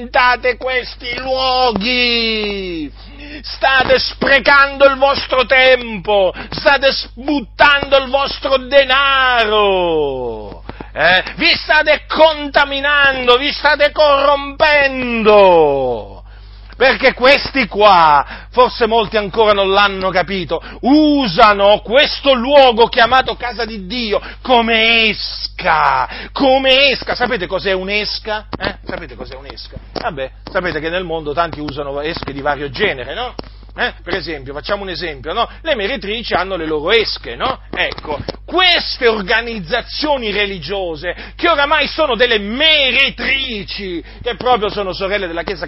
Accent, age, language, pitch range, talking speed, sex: native, 40-59, Italian, 170-260 Hz, 115 wpm, male